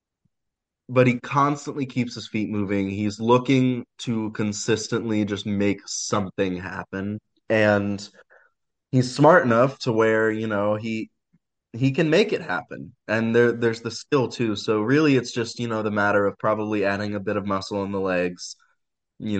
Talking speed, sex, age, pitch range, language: 165 wpm, male, 20-39, 100-120 Hz, English